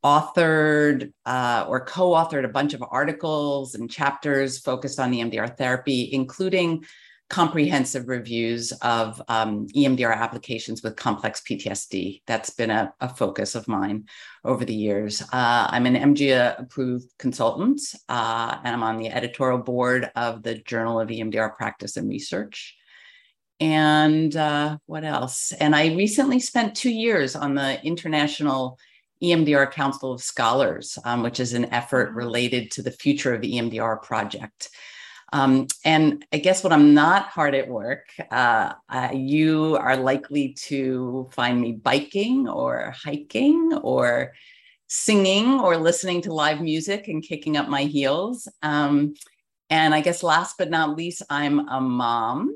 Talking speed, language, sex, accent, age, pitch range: 145 wpm, English, female, American, 50-69, 125-155 Hz